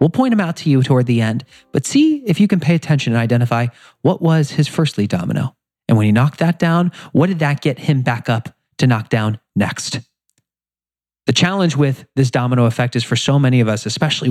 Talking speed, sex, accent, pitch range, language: 225 wpm, male, American, 115-165 Hz, English